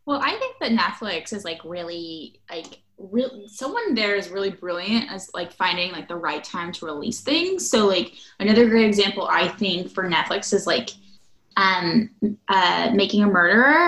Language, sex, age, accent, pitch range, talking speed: English, female, 10-29, American, 190-245 Hz, 175 wpm